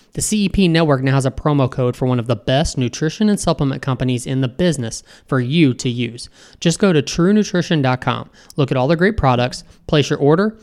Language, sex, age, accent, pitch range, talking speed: English, male, 20-39, American, 130-170 Hz, 210 wpm